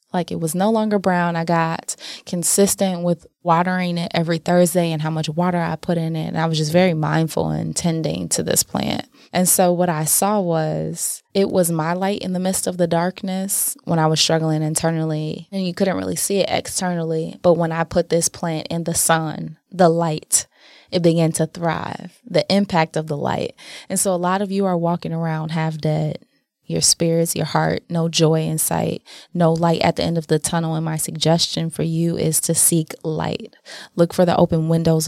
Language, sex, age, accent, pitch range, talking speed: English, female, 20-39, American, 160-175 Hz, 210 wpm